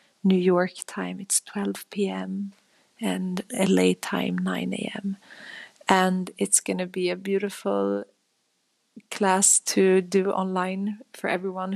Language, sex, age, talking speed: English, female, 30-49, 120 wpm